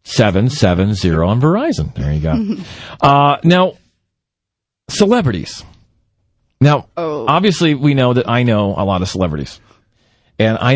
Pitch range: 110-150 Hz